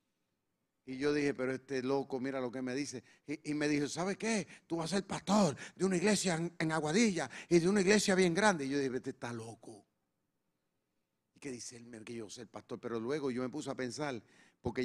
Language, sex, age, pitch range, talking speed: Spanish, male, 40-59, 130-180 Hz, 230 wpm